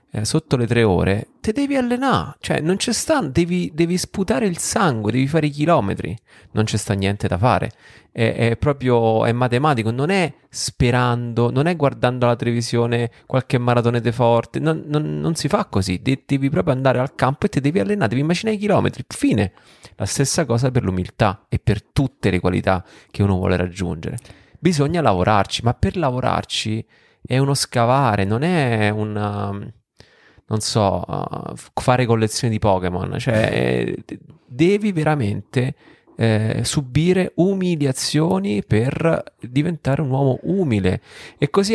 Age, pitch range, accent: 30-49, 110-155 Hz, native